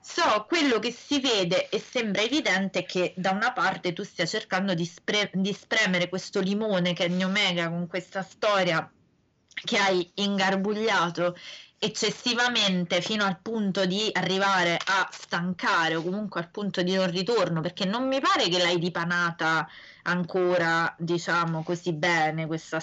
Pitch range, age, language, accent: 175-205 Hz, 20-39, Italian, native